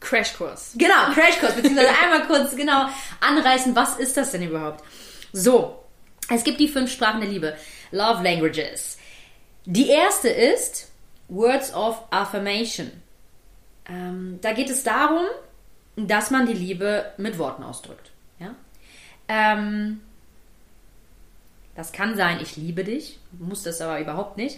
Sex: female